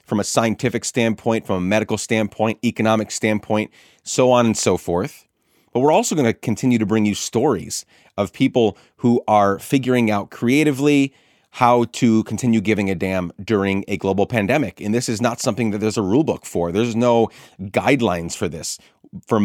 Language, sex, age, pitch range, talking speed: English, male, 30-49, 100-120 Hz, 180 wpm